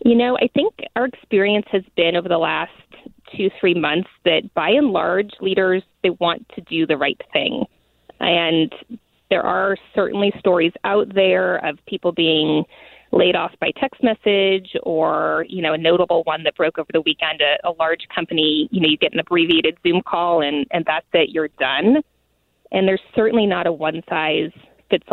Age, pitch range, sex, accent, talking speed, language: 20-39, 160-195 Hz, female, American, 185 wpm, English